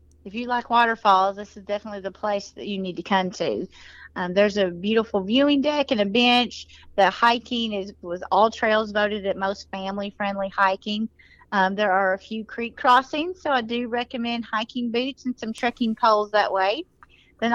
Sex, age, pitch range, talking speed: female, 30-49, 200-240 Hz, 190 wpm